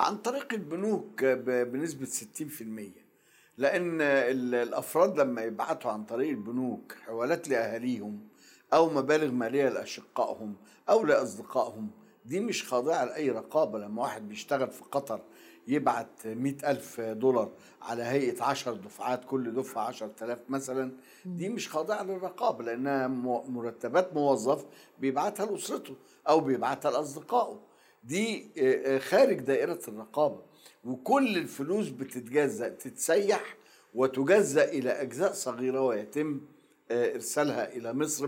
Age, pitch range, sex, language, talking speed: 60-79, 125-155 Hz, male, Arabic, 110 wpm